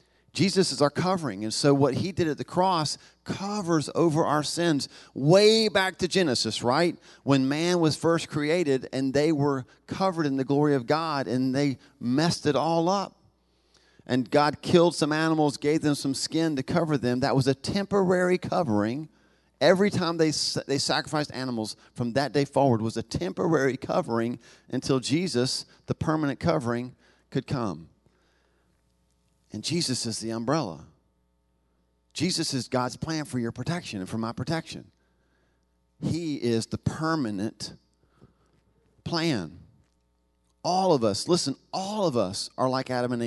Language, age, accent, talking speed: English, 40-59, American, 155 wpm